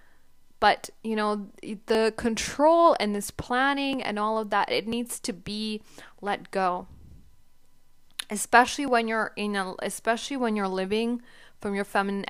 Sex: female